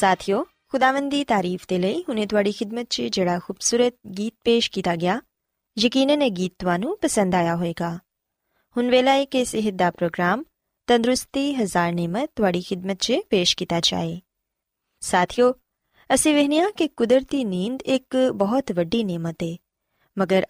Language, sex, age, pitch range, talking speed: Punjabi, female, 20-39, 185-260 Hz, 130 wpm